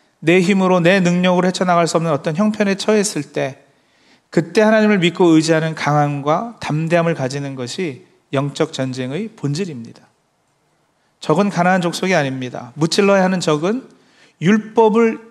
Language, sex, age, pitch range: Korean, male, 40-59, 155-210 Hz